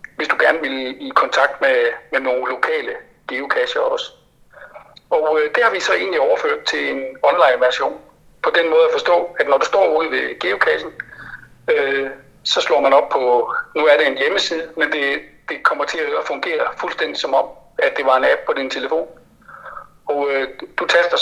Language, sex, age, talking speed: Danish, male, 60-79, 195 wpm